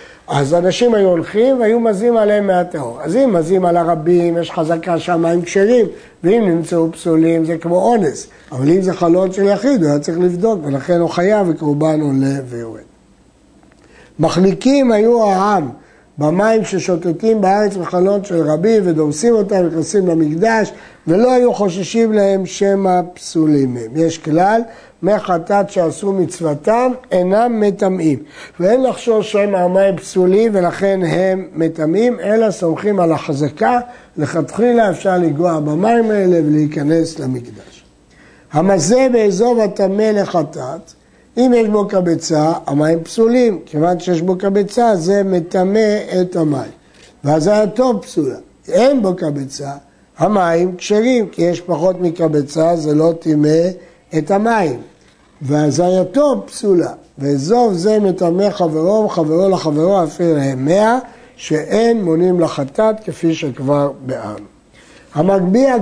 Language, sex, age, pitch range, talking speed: Hebrew, male, 60-79, 160-210 Hz, 125 wpm